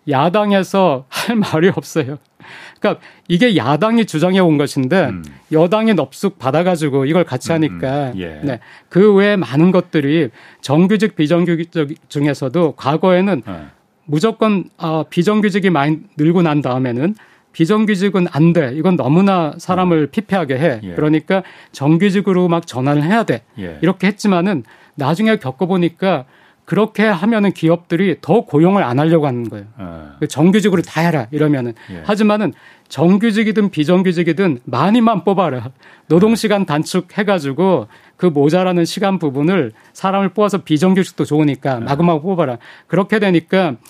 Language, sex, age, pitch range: Korean, male, 40-59, 150-195 Hz